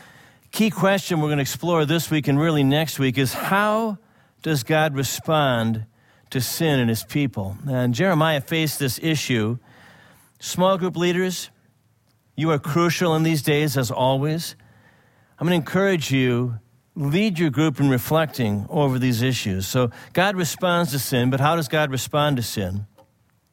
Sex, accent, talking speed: male, American, 160 wpm